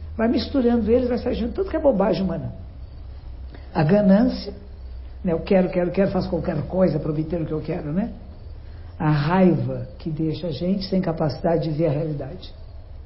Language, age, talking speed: Portuguese, 60-79, 180 wpm